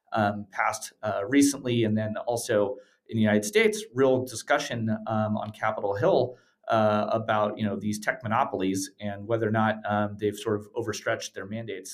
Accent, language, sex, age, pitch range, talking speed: American, English, male, 30-49, 110-130 Hz, 175 wpm